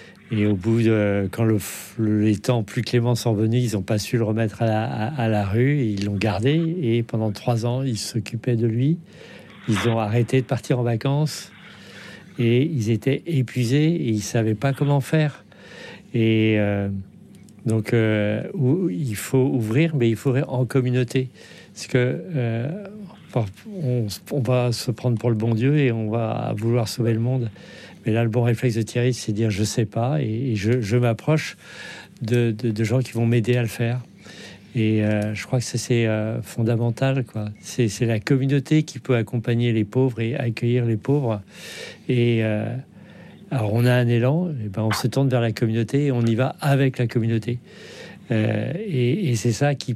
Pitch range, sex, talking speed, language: 110-130 Hz, male, 195 wpm, French